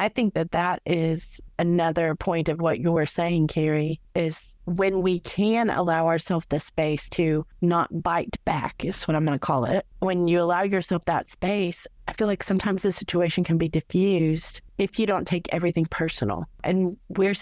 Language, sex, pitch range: English, female, 160-195 Hz